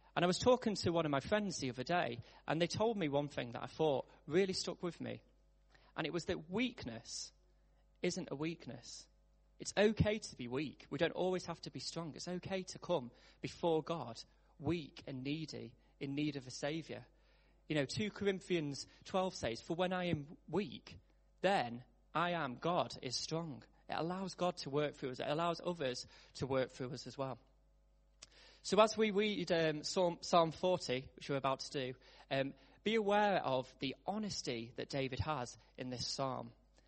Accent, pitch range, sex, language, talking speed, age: British, 130-175 Hz, male, English, 190 wpm, 30-49